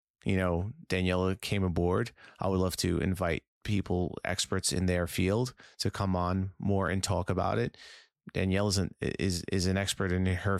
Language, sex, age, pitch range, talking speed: English, male, 30-49, 90-105 Hz, 180 wpm